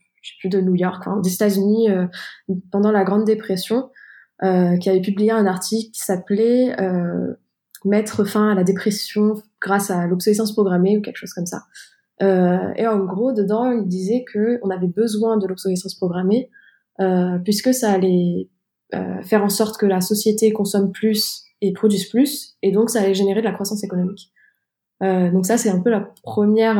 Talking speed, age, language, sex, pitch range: 195 wpm, 20-39, French, female, 185-215 Hz